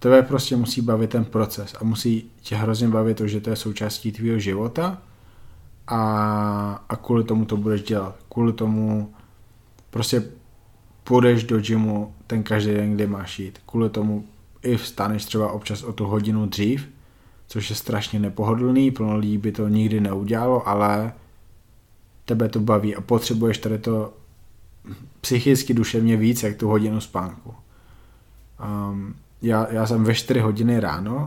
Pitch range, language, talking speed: 105-120 Hz, Slovak, 155 wpm